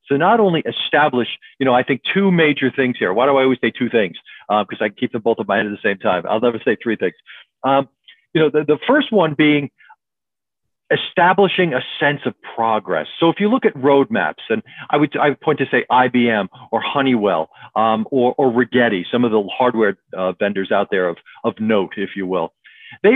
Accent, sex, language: American, male, English